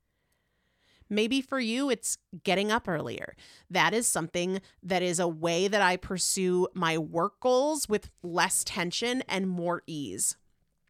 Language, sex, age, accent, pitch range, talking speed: English, female, 30-49, American, 175-230 Hz, 145 wpm